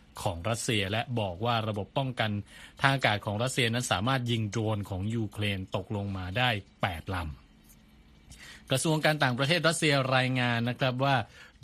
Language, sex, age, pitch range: Thai, male, 20-39, 105-130 Hz